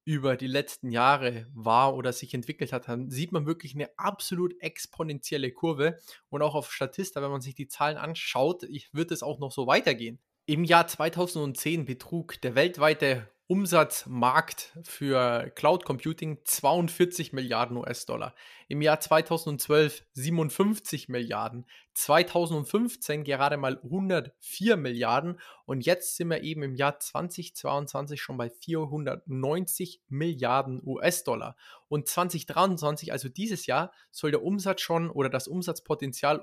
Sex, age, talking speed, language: male, 20-39, 130 wpm, German